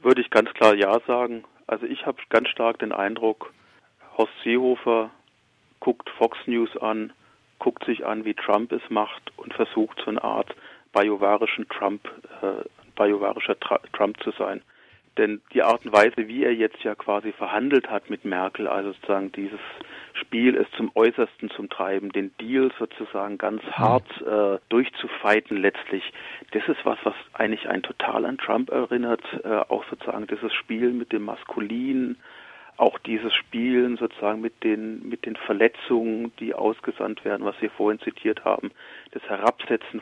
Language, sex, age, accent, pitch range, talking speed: German, male, 40-59, German, 105-125 Hz, 160 wpm